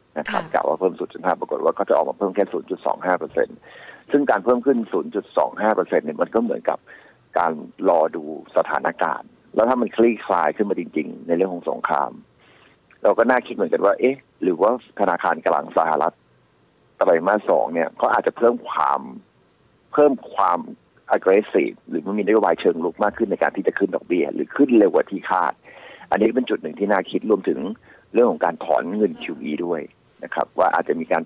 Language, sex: Thai, male